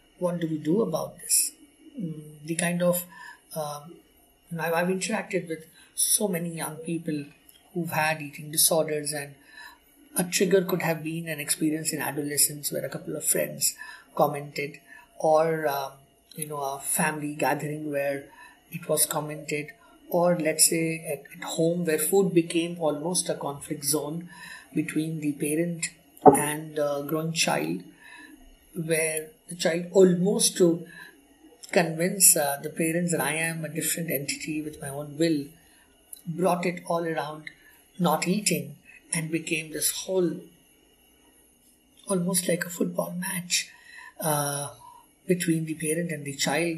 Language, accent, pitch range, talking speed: English, Indian, 150-180 Hz, 140 wpm